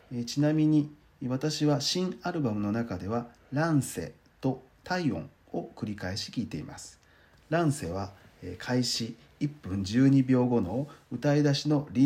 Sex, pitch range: male, 100-145 Hz